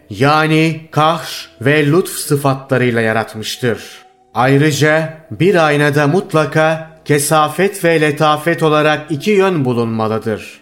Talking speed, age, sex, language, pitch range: 95 wpm, 30-49, male, Turkish, 135-155 Hz